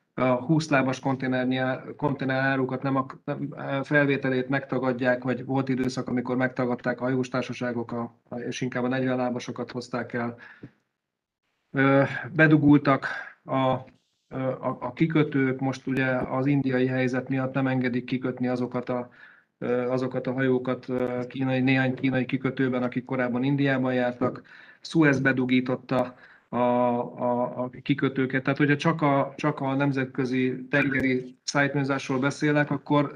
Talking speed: 125 wpm